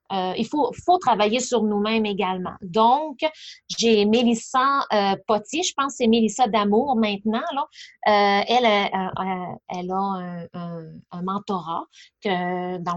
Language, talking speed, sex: French, 155 wpm, female